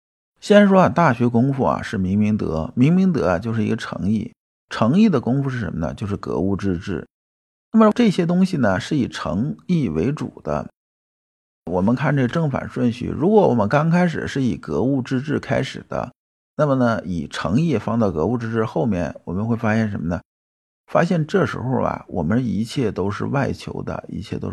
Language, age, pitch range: Chinese, 50-69, 100-155 Hz